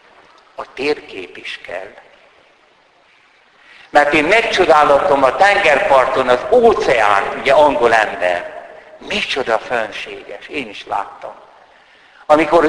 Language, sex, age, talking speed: Hungarian, male, 60-79, 95 wpm